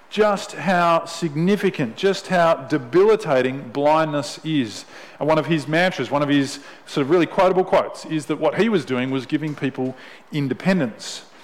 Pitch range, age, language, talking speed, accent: 140-185 Hz, 40-59, English, 165 wpm, Australian